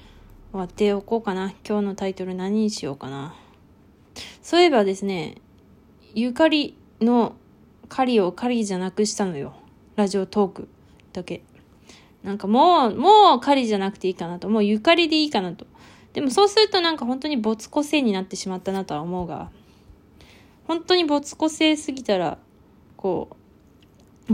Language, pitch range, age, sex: Japanese, 190-230 Hz, 20-39, female